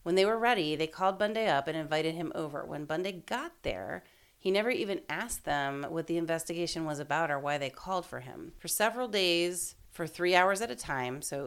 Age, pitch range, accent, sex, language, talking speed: 30-49, 155-210 Hz, American, female, English, 220 wpm